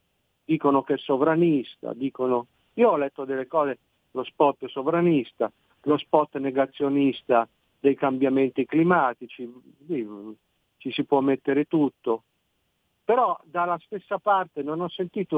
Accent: native